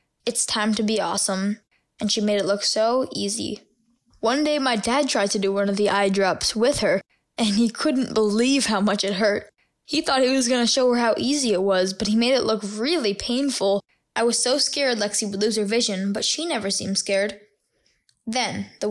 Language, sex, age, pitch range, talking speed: English, female, 10-29, 205-245 Hz, 220 wpm